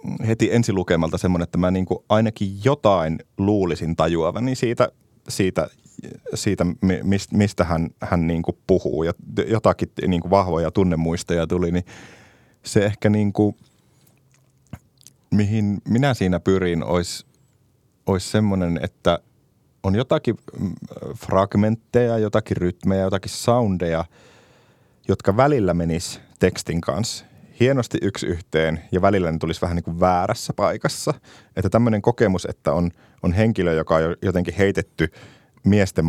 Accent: native